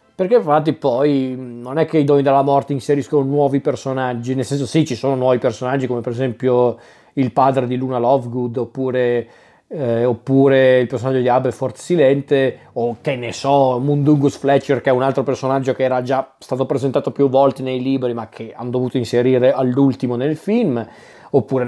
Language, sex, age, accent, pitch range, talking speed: Italian, male, 20-39, native, 125-150 Hz, 180 wpm